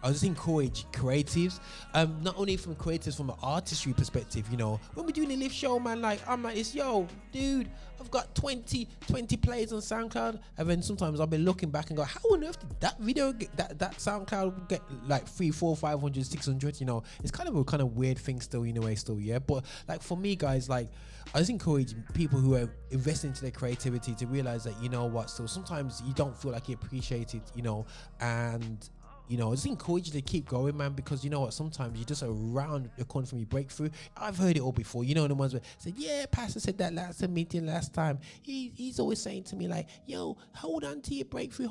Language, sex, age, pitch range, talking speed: English, male, 20-39, 125-175 Hz, 245 wpm